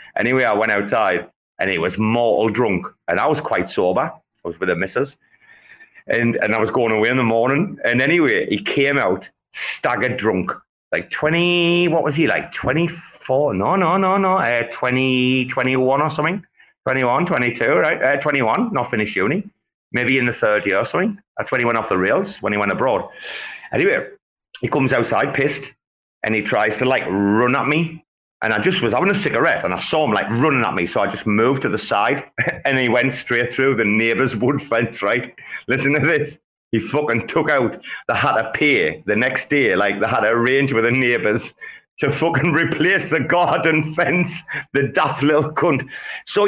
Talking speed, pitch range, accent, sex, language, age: 200 wpm, 120-175 Hz, British, male, English, 30-49